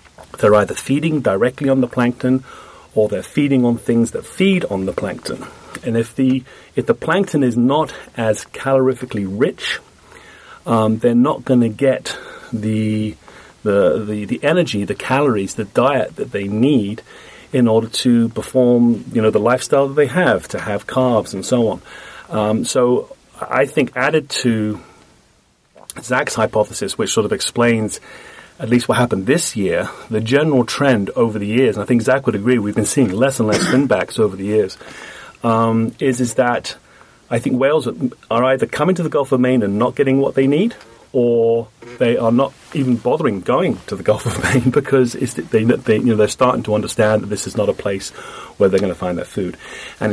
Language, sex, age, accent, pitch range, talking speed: English, male, 40-59, British, 105-130 Hz, 190 wpm